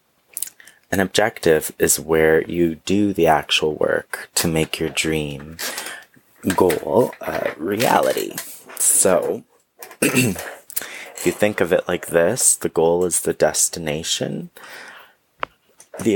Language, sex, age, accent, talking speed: English, male, 30-49, American, 110 wpm